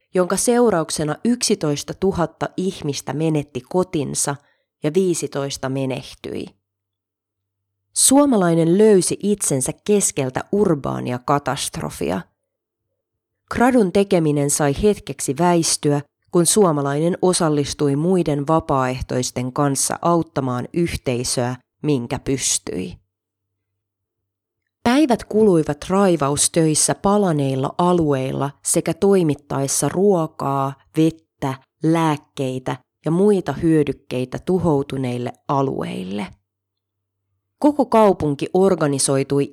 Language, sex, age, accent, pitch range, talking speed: Finnish, female, 30-49, native, 135-180 Hz, 75 wpm